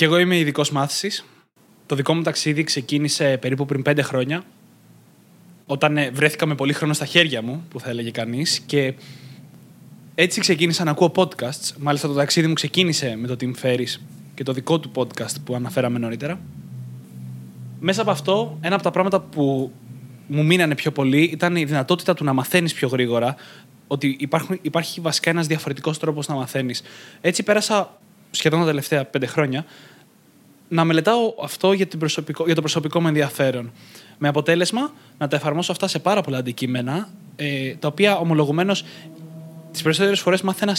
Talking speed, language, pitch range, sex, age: 160 wpm, Greek, 135-175 Hz, male, 20-39